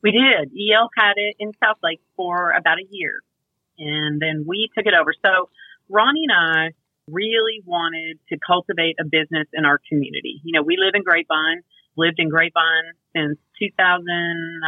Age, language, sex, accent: 30-49, English, female, American